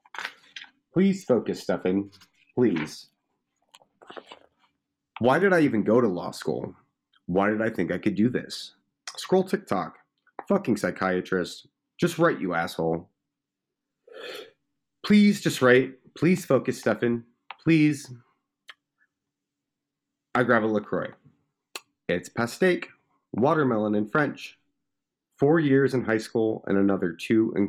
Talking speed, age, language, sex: 115 wpm, 30-49, English, male